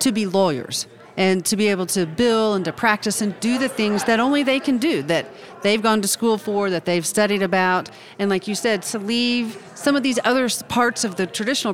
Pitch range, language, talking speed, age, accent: 175-225 Hz, English, 230 wpm, 40-59, American